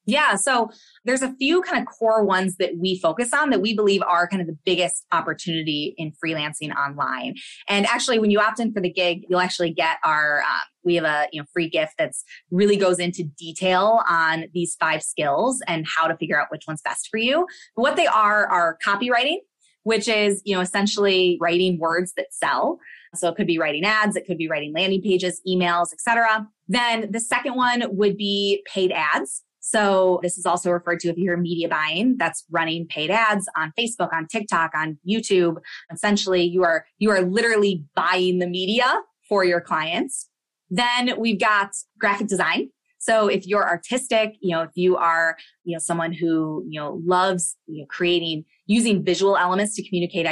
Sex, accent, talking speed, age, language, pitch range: female, American, 195 wpm, 20-39, English, 170-220 Hz